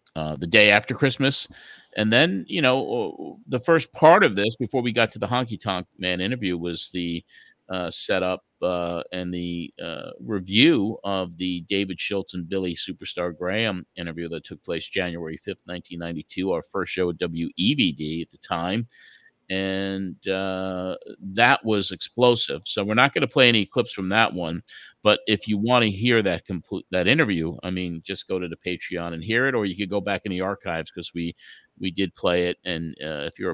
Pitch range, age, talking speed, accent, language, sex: 85-100 Hz, 50-69, 200 wpm, American, English, male